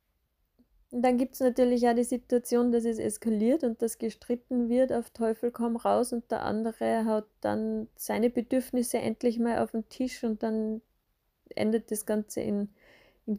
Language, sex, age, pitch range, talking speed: German, female, 30-49, 190-230 Hz, 170 wpm